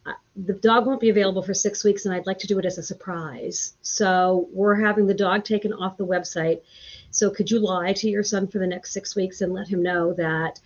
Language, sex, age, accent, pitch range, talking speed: English, female, 50-69, American, 175-205 Hz, 240 wpm